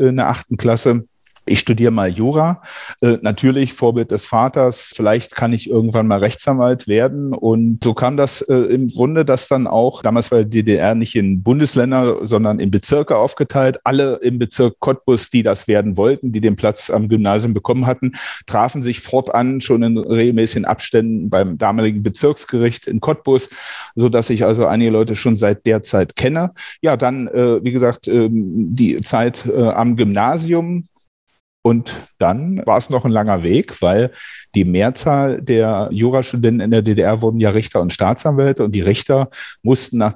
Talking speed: 175 wpm